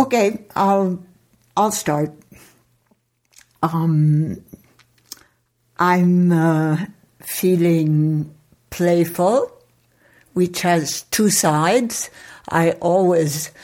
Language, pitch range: English, 160-190 Hz